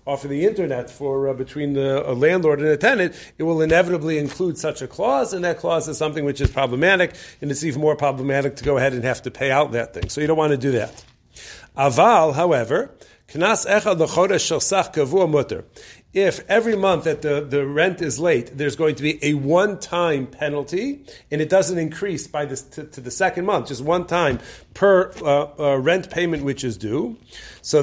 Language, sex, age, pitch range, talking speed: English, male, 40-59, 145-180 Hz, 200 wpm